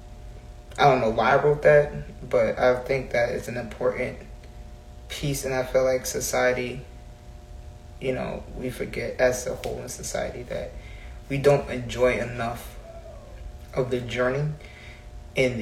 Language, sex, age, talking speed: English, male, 20-39, 145 wpm